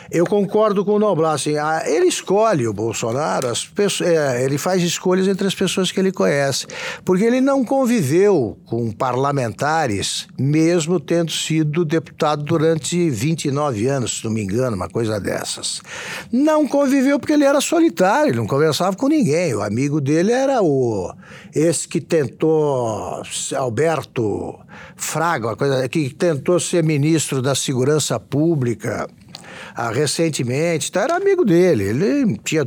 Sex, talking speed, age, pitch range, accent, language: male, 145 wpm, 60-79, 135-195 Hz, Brazilian, Portuguese